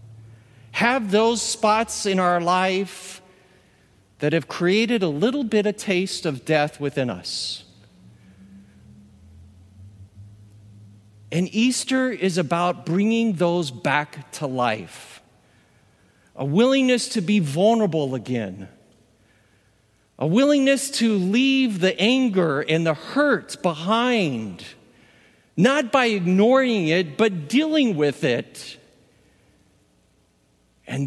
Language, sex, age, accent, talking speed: English, male, 50-69, American, 100 wpm